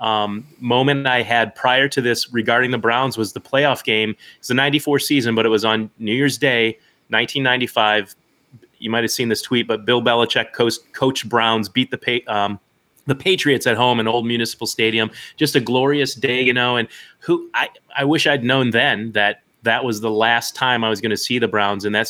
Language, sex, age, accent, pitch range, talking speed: English, male, 30-49, American, 110-135 Hz, 210 wpm